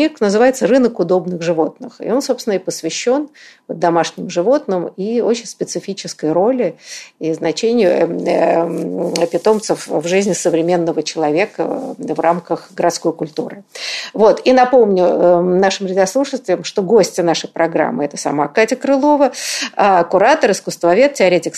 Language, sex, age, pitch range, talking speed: Russian, female, 50-69, 165-230 Hz, 120 wpm